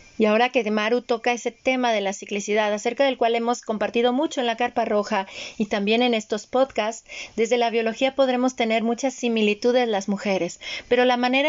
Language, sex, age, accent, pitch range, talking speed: Spanish, female, 40-59, Mexican, 220-265 Hz, 200 wpm